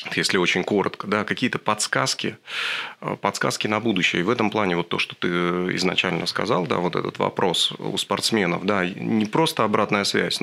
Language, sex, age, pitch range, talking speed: Russian, male, 30-49, 90-105 Hz, 150 wpm